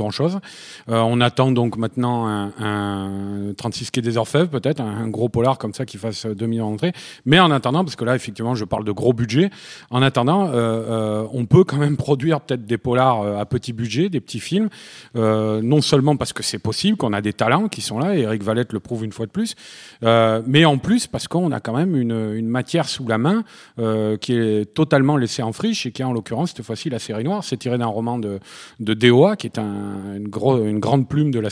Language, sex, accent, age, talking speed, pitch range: French, male, French, 40-59, 245 wpm, 105-130 Hz